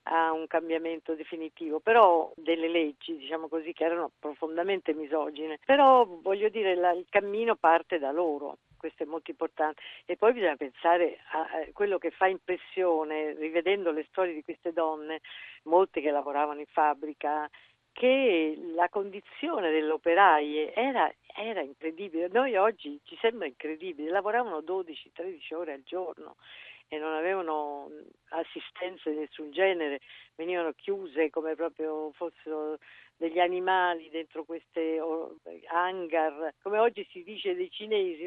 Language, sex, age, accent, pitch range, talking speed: Italian, female, 50-69, native, 155-185 Hz, 135 wpm